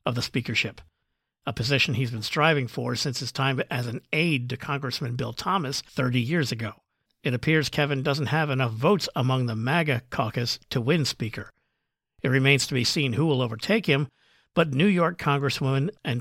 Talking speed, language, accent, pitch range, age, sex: 185 wpm, English, American, 125-155 Hz, 50-69, male